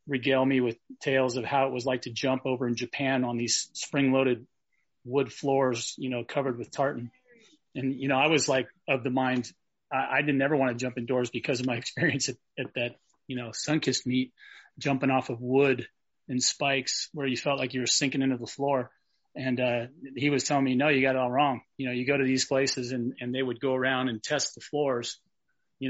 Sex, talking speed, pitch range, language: male, 230 wpm, 125-140 Hz, English